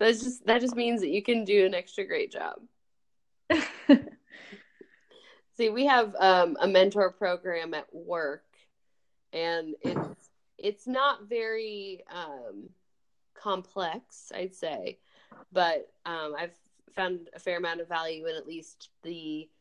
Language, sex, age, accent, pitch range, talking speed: English, female, 20-39, American, 150-205 Hz, 135 wpm